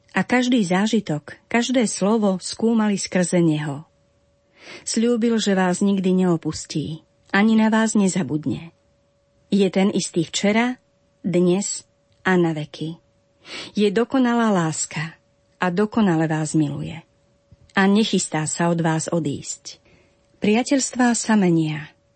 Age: 40-59